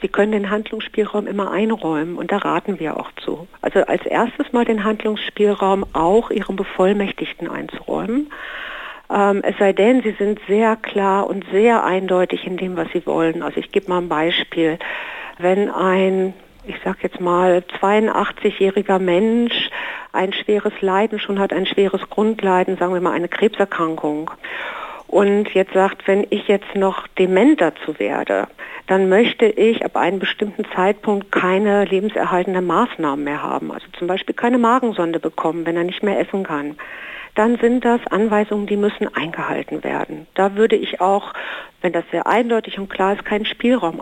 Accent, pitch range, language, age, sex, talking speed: German, 185-225 Hz, German, 60-79, female, 165 wpm